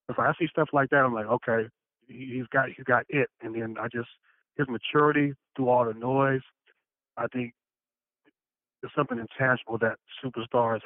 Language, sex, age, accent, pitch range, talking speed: English, male, 30-49, American, 110-125 Hz, 175 wpm